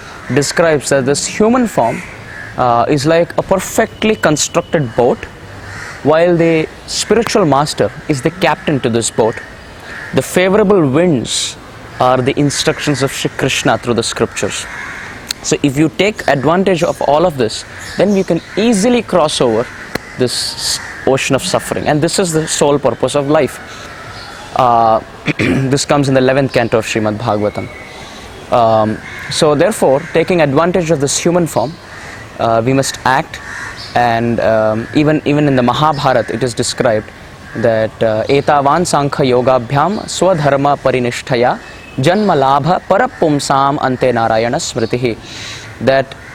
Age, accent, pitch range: 20-39, native, 120-165 Hz